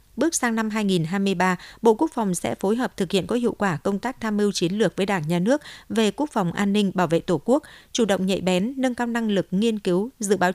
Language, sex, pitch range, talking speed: Vietnamese, female, 180-235 Hz, 260 wpm